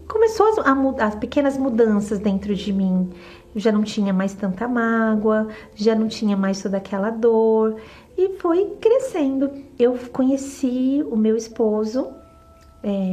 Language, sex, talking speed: Portuguese, female, 145 wpm